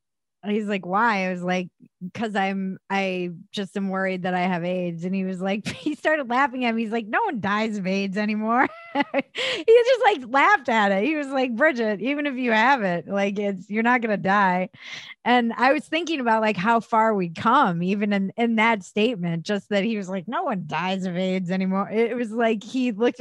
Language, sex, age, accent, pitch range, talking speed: English, female, 20-39, American, 185-225 Hz, 220 wpm